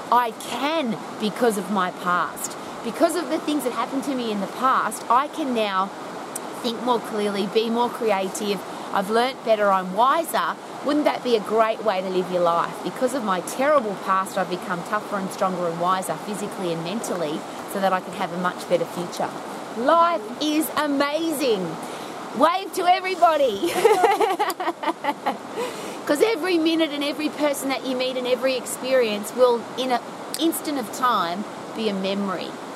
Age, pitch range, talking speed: 30-49, 205-300 Hz, 170 wpm